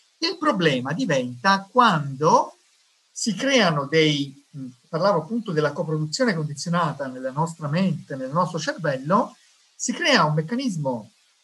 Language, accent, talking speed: Italian, native, 115 wpm